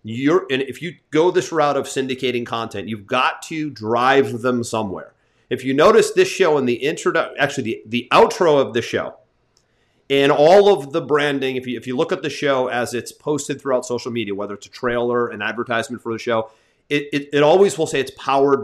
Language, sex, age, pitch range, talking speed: English, male, 30-49, 120-160 Hz, 215 wpm